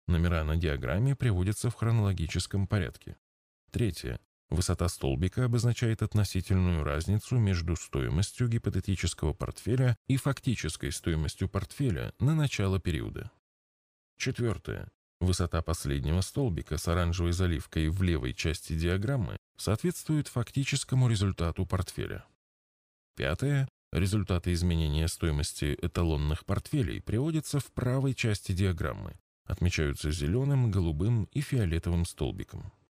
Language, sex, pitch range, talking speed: Russian, male, 85-115 Hz, 100 wpm